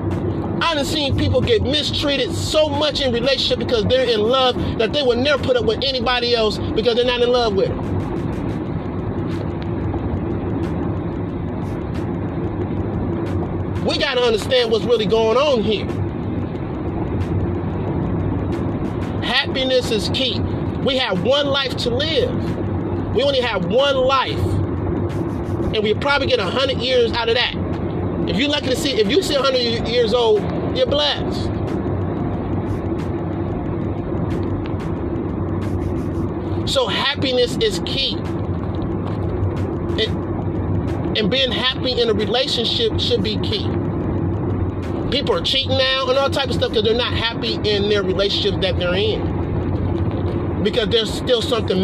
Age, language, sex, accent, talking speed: 30-49, English, male, American, 130 wpm